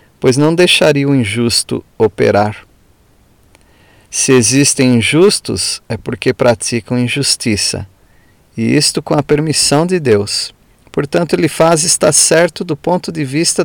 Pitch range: 110-145 Hz